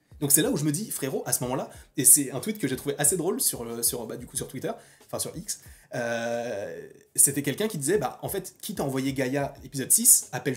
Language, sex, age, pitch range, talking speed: French, male, 20-39, 130-175 Hz, 255 wpm